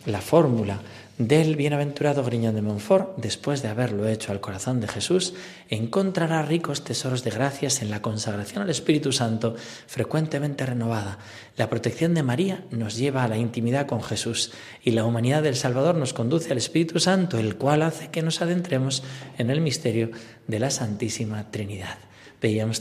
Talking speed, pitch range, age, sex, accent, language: 165 wpm, 115-155 Hz, 40-59, male, Spanish, Spanish